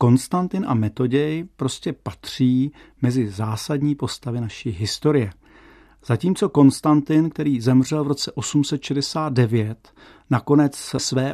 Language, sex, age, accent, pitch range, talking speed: Czech, male, 50-69, native, 120-145 Hz, 100 wpm